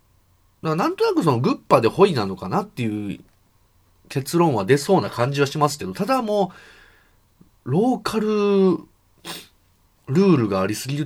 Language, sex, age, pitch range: Japanese, male, 30-49, 95-160 Hz